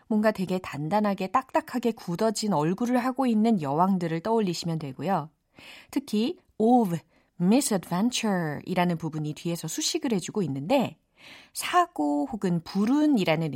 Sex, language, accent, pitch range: female, Korean, native, 165-250 Hz